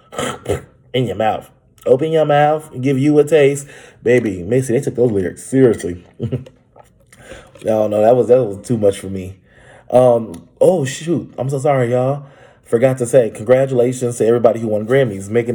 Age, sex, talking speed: 20-39, male, 180 wpm